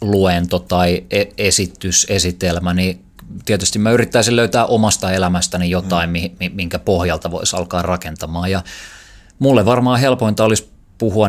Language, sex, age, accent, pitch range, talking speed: Finnish, male, 20-39, native, 85-100 Hz, 115 wpm